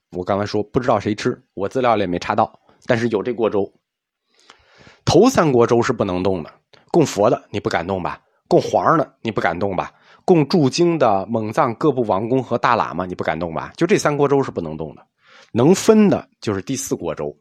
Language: Chinese